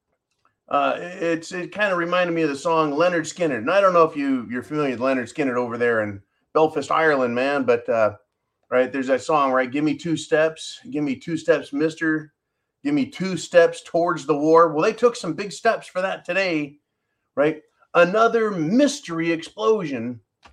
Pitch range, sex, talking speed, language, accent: 145-210 Hz, male, 190 wpm, English, American